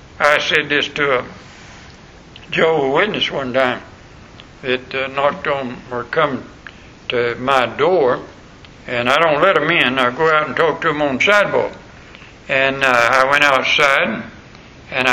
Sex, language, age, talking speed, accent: male, English, 60-79, 160 wpm, American